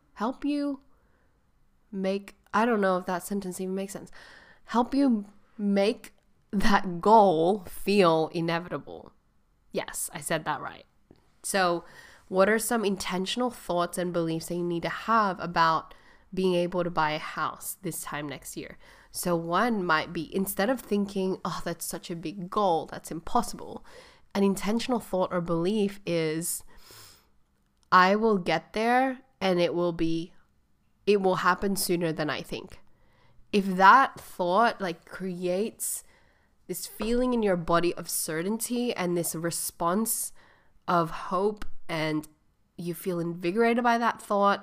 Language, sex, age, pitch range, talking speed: English, female, 10-29, 170-210 Hz, 145 wpm